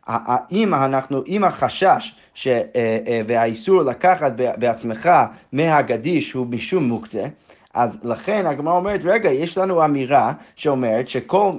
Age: 30-49